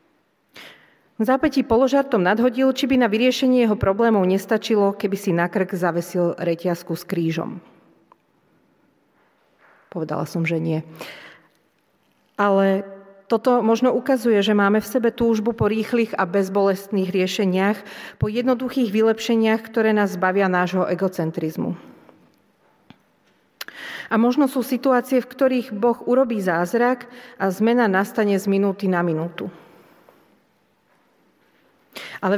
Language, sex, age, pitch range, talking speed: Slovak, female, 40-59, 185-235 Hz, 115 wpm